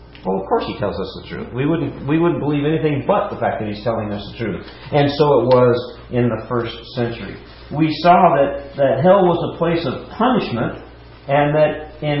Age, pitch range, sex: 50-69, 120-175 Hz, male